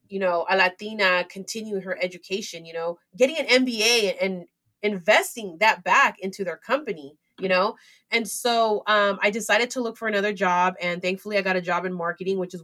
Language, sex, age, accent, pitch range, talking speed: English, female, 30-49, American, 185-235 Hz, 195 wpm